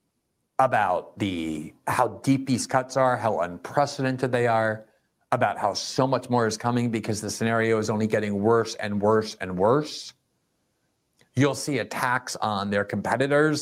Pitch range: 110-135 Hz